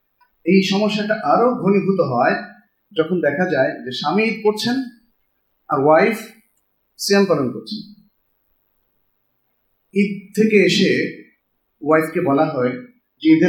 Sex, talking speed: male, 60 wpm